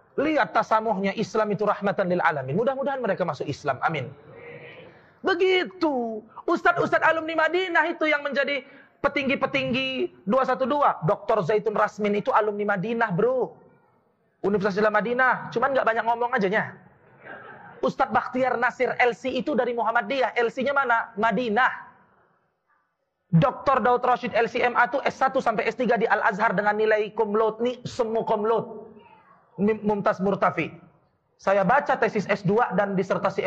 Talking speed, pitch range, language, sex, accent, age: 125 wpm, 210-275 Hz, Indonesian, male, native, 30-49